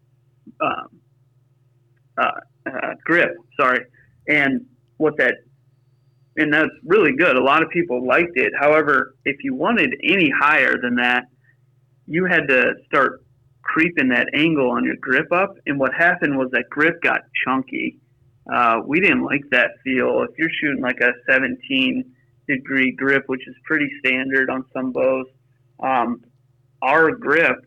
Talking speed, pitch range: 150 wpm, 130-150 Hz